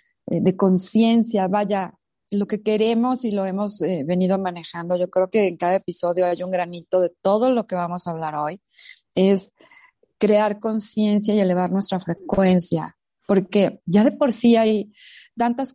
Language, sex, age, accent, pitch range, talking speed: Spanish, female, 30-49, Mexican, 175-215 Hz, 165 wpm